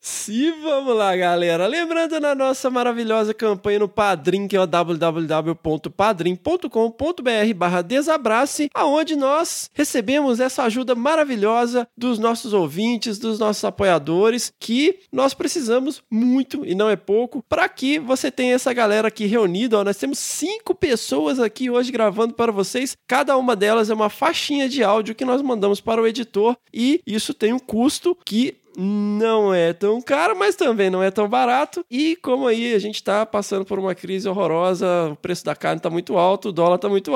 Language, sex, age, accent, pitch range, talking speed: Portuguese, male, 20-39, Brazilian, 195-255 Hz, 170 wpm